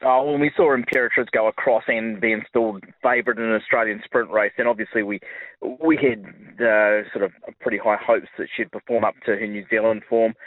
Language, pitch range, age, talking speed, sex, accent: English, 100-120 Hz, 20-39, 210 wpm, male, Australian